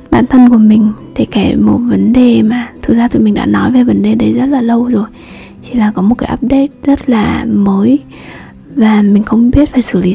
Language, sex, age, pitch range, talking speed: Vietnamese, female, 20-39, 215-255 Hz, 235 wpm